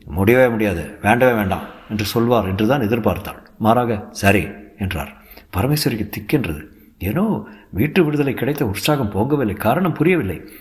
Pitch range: 105-130 Hz